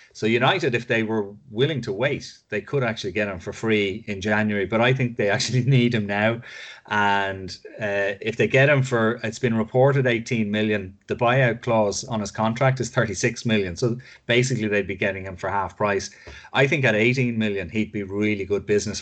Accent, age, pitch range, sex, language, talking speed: Irish, 30-49, 105-125 Hz, male, English, 205 wpm